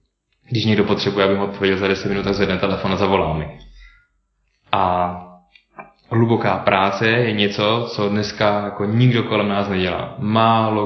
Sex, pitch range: male, 100-110 Hz